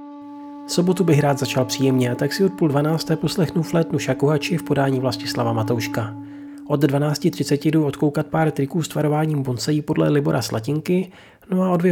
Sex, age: male, 30-49